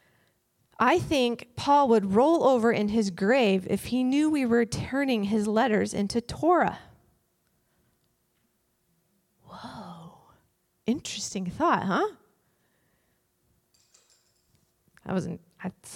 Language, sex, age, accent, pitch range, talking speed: English, female, 20-39, American, 185-235 Hz, 100 wpm